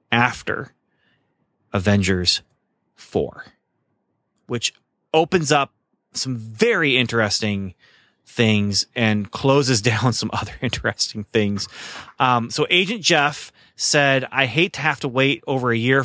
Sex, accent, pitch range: male, American, 110-135 Hz